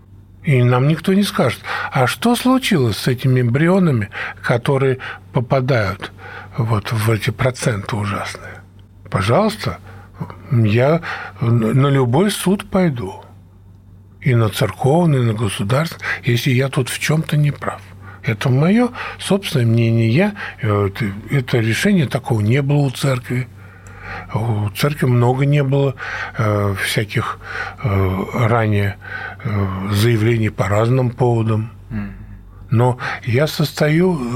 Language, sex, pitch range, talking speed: Russian, male, 100-140 Hz, 115 wpm